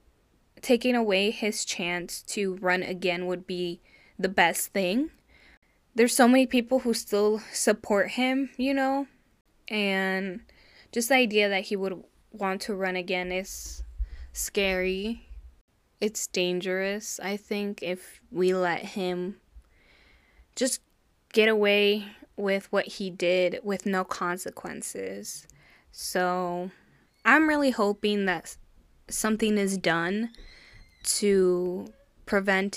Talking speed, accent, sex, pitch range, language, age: 115 wpm, American, female, 180-215 Hz, English, 10-29